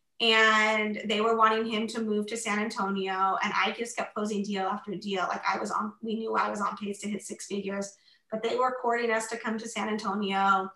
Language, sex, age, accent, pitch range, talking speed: English, female, 20-39, American, 200-235 Hz, 235 wpm